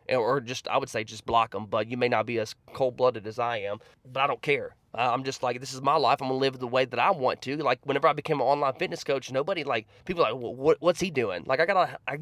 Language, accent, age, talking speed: English, American, 20-39, 285 wpm